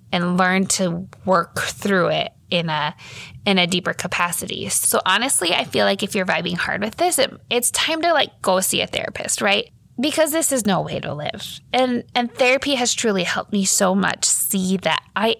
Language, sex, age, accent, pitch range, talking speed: English, female, 20-39, American, 180-220 Hz, 205 wpm